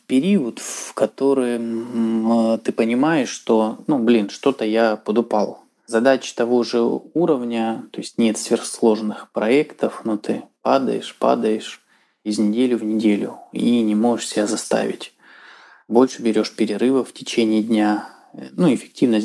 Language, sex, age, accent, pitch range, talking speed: Russian, male, 20-39, native, 105-120 Hz, 130 wpm